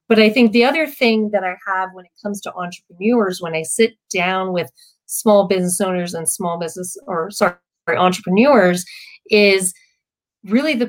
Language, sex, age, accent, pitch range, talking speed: English, female, 30-49, American, 195-245 Hz, 170 wpm